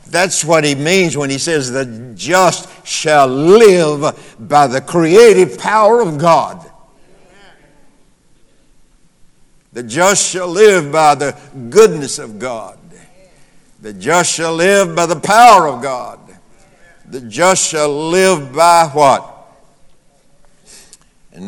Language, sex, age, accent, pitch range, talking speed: English, male, 60-79, American, 125-160 Hz, 115 wpm